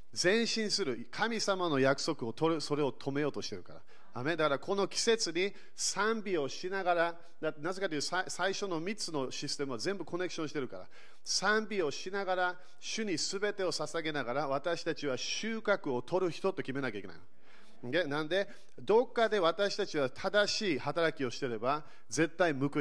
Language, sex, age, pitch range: Japanese, male, 40-59, 135-185 Hz